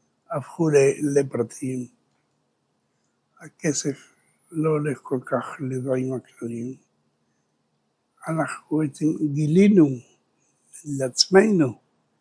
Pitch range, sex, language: 130-170 Hz, male, Hebrew